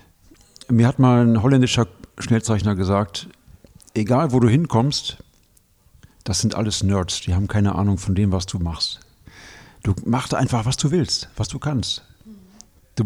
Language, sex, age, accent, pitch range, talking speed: German, male, 50-69, German, 100-120 Hz, 155 wpm